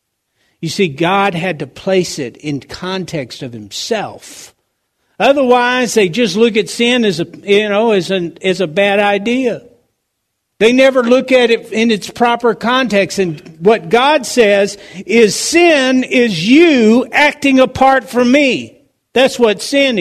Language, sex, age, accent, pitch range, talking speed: English, male, 60-79, American, 165-250 Hz, 155 wpm